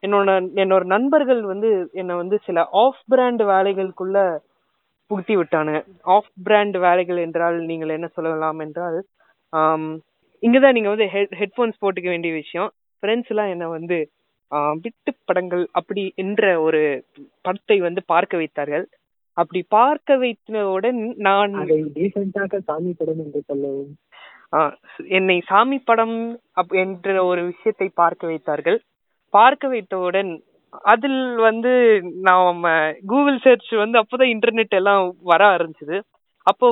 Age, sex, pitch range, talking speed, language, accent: 20-39, female, 180-230 Hz, 100 wpm, Tamil, native